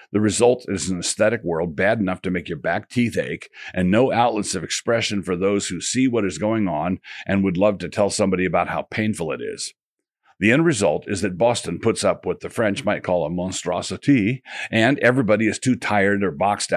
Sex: male